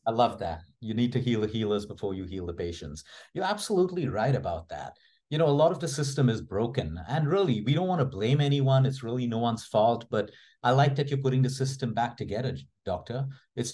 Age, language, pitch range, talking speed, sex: 50-69, English, 115-135 Hz, 230 wpm, male